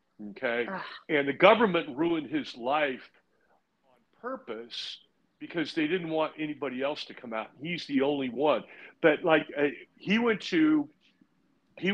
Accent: American